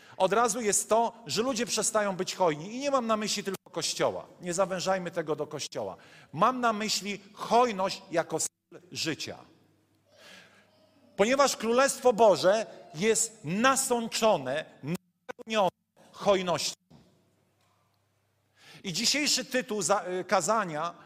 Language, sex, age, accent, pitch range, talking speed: Polish, male, 40-59, native, 180-235 Hz, 110 wpm